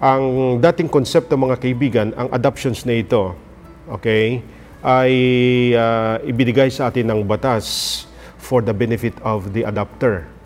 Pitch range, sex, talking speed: 115-130 Hz, male, 130 wpm